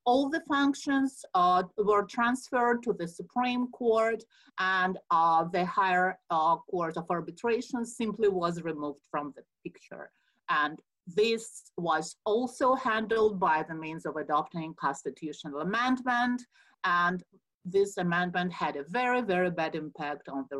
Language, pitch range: English, 170-225 Hz